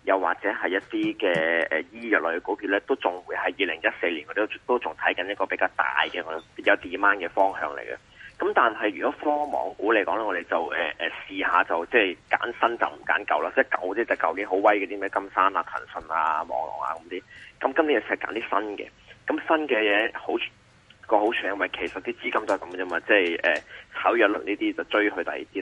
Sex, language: male, Chinese